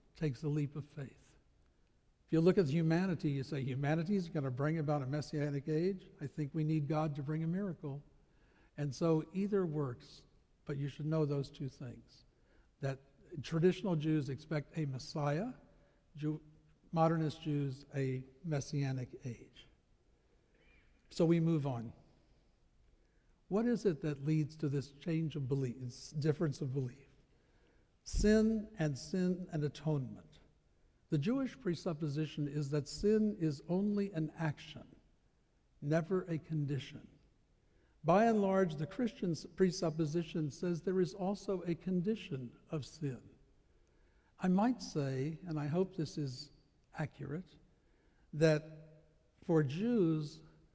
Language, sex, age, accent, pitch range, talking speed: English, male, 60-79, American, 145-175 Hz, 135 wpm